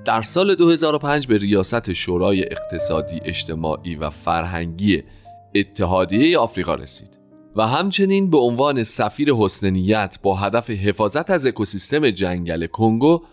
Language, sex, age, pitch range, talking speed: Persian, male, 30-49, 90-140 Hz, 115 wpm